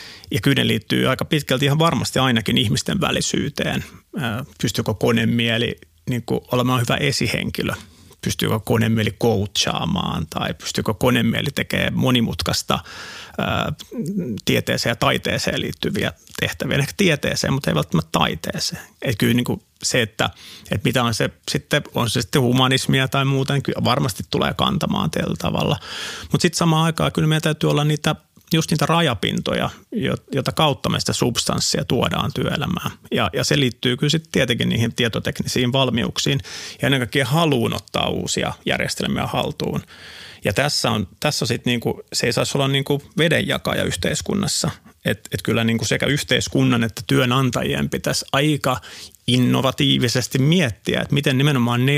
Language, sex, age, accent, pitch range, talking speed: Finnish, male, 30-49, native, 115-145 Hz, 145 wpm